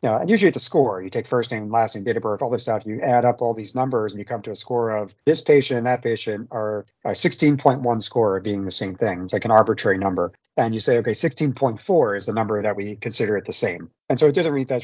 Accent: American